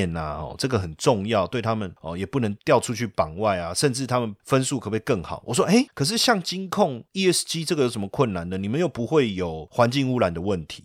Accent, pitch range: native, 100-135 Hz